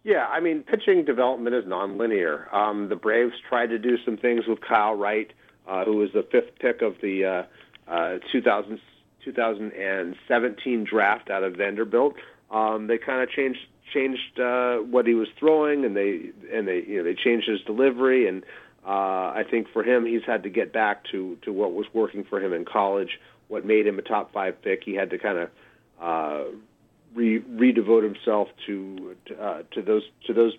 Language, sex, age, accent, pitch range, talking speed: English, male, 40-59, American, 100-120 Hz, 190 wpm